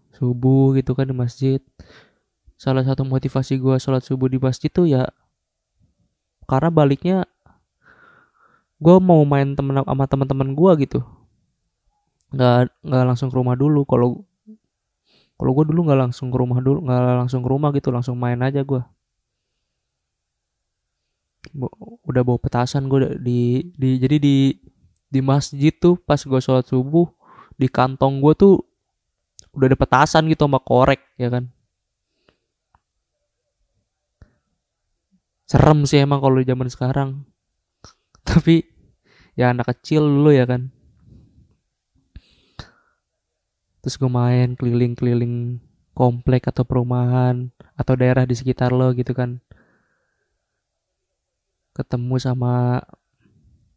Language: Indonesian